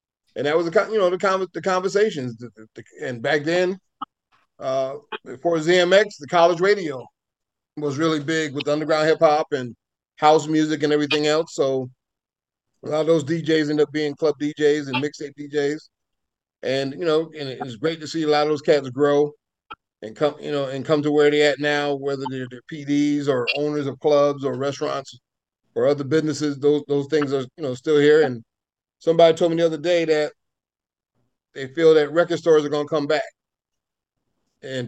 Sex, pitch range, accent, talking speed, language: male, 135-155 Hz, American, 190 wpm, English